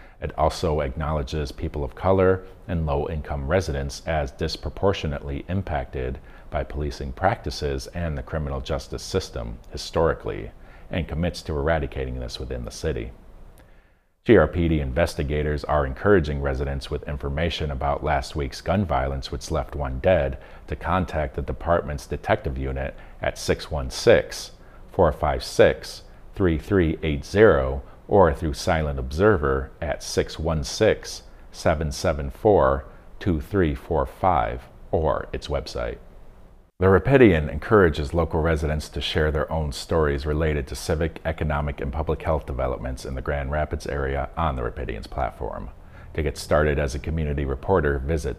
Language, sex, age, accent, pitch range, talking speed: English, male, 40-59, American, 70-80 Hz, 120 wpm